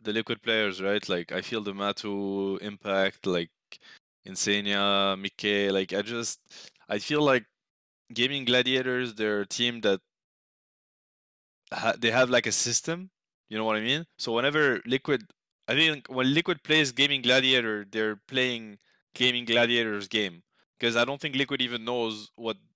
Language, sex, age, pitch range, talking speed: English, male, 20-39, 100-125 Hz, 150 wpm